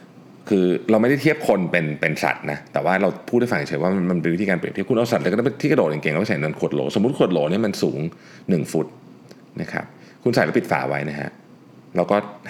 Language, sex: Thai, male